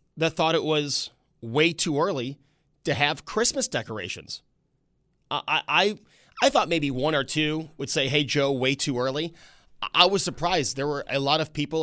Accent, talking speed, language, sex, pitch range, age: American, 180 wpm, English, male, 130-160 Hz, 30-49